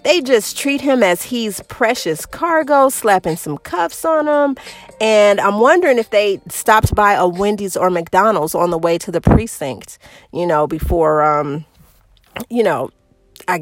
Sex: female